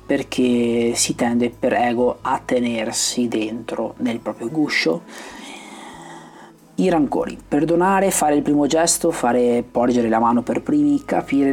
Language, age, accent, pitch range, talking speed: Italian, 30-49, native, 120-170 Hz, 130 wpm